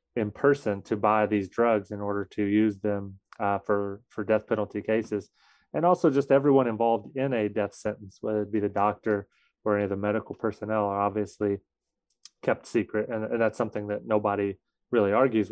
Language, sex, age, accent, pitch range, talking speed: English, male, 30-49, American, 100-115 Hz, 190 wpm